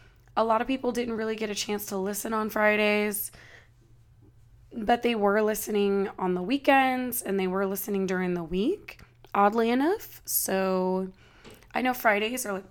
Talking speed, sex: 165 wpm, female